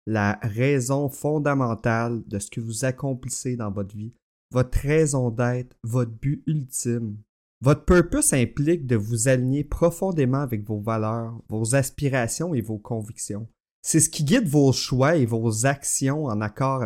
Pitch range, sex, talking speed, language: 115-150 Hz, male, 155 wpm, French